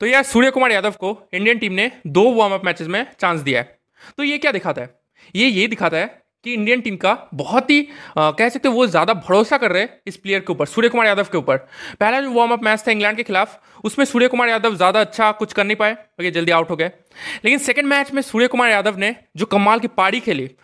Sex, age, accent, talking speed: male, 20-39, native, 255 wpm